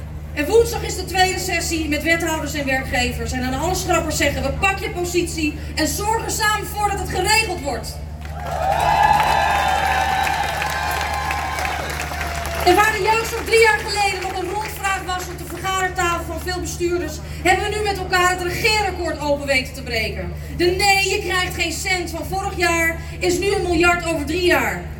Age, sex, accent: 30-49, female, Dutch